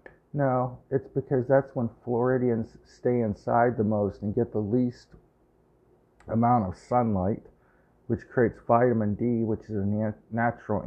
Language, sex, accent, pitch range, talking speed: English, male, American, 100-120 Hz, 140 wpm